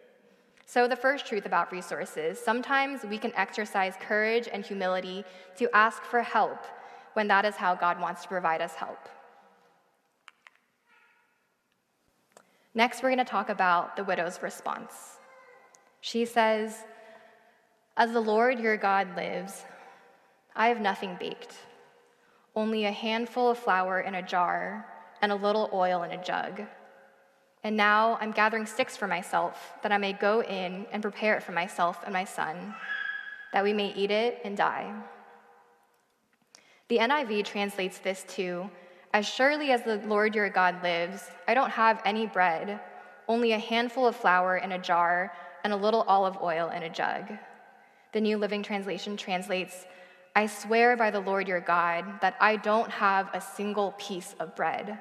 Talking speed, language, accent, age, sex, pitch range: 155 wpm, English, American, 10-29, female, 185-225 Hz